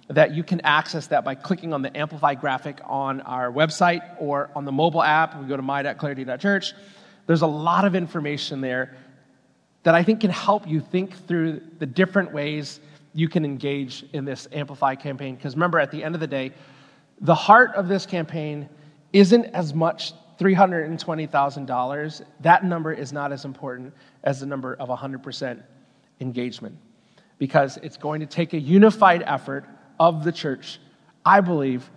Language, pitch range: English, 140-175 Hz